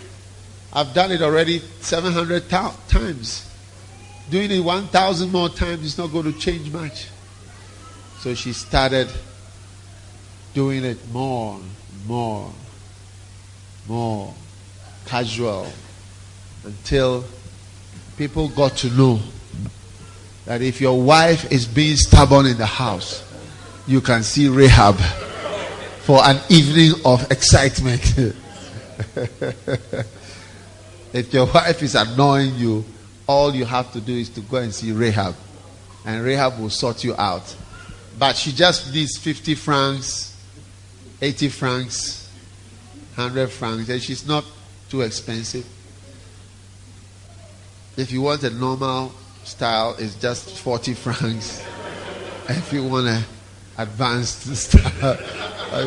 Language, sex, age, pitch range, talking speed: English, male, 50-69, 100-135 Hz, 115 wpm